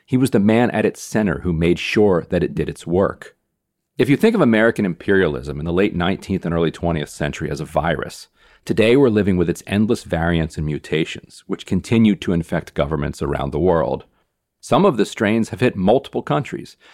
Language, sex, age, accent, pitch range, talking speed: English, male, 40-59, American, 85-110 Hz, 200 wpm